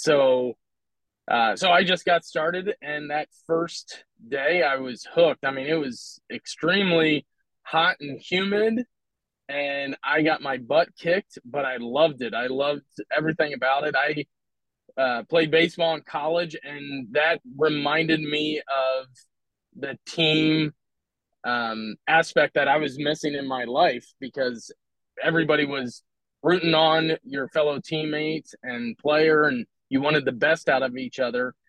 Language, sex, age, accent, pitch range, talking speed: English, male, 20-39, American, 135-160 Hz, 150 wpm